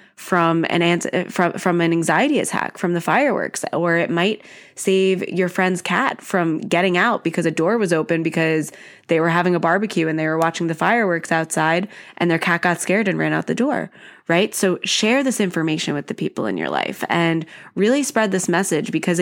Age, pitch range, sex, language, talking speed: 20-39, 165-210 Hz, female, English, 205 wpm